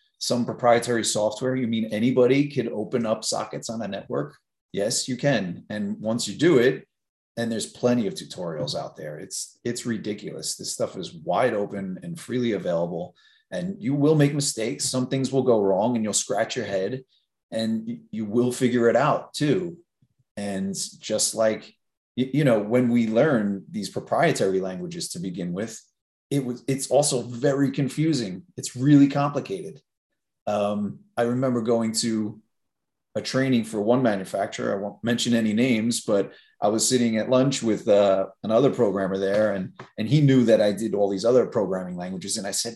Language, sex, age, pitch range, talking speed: English, male, 30-49, 110-140 Hz, 175 wpm